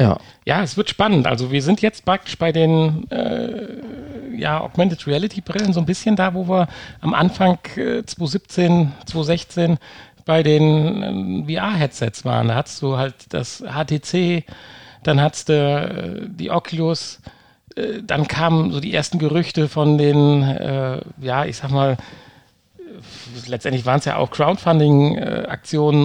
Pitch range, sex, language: 135-175 Hz, male, German